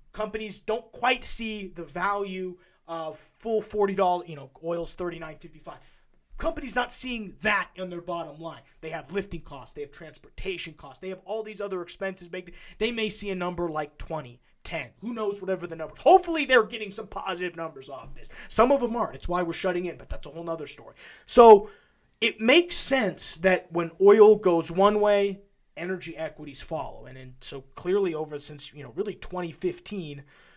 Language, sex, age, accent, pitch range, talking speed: English, male, 20-39, American, 155-200 Hz, 185 wpm